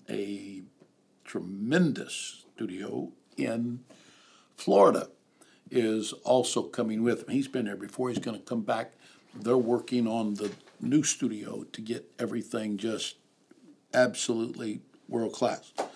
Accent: American